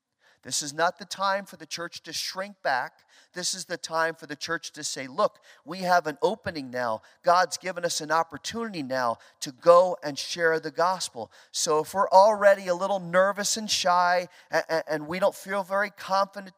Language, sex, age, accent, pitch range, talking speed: English, male, 40-59, American, 135-195 Hz, 190 wpm